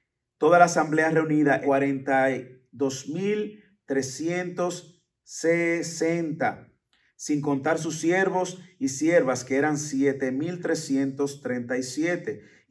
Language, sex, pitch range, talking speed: English, male, 135-160 Hz, 65 wpm